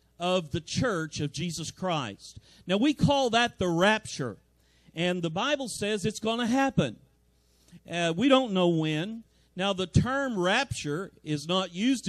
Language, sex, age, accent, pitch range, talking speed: English, male, 50-69, American, 160-215 Hz, 155 wpm